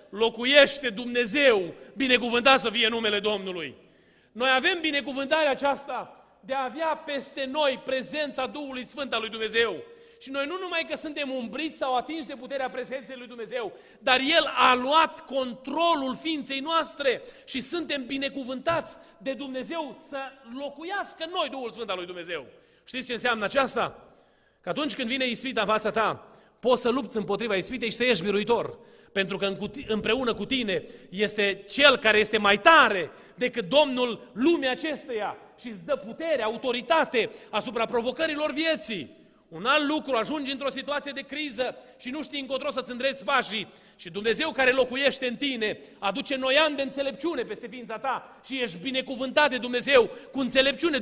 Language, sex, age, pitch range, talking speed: Romanian, male, 30-49, 235-295 Hz, 160 wpm